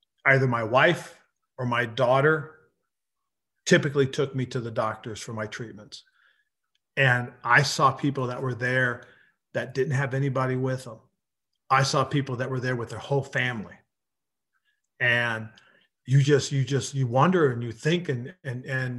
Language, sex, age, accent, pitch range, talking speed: English, male, 50-69, American, 120-140 Hz, 160 wpm